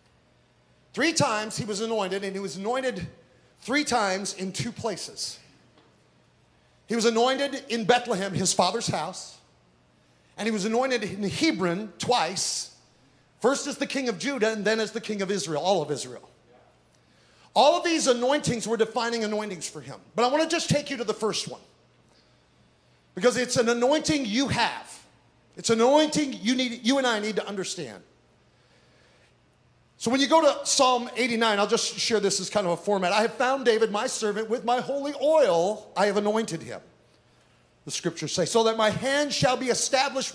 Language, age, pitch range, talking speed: English, 40-59, 180-245 Hz, 180 wpm